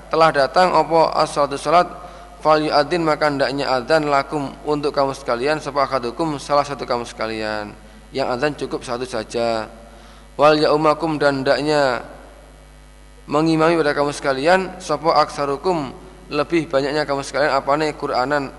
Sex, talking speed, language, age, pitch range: male, 125 wpm, Indonesian, 20-39, 135-160 Hz